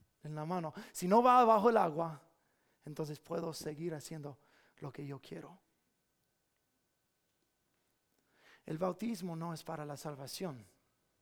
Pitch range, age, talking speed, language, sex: 155-200 Hz, 30-49, 130 wpm, English, male